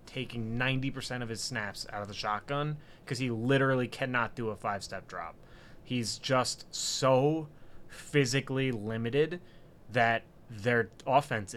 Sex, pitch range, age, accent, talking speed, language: male, 120-150 Hz, 20-39, American, 130 wpm, English